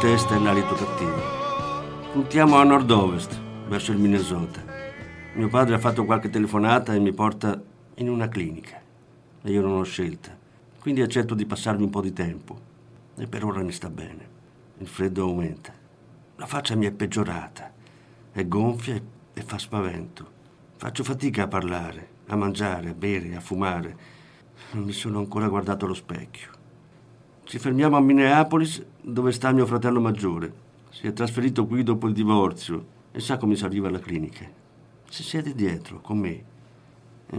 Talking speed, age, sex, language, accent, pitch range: 160 wpm, 50-69, male, Italian, native, 100-125 Hz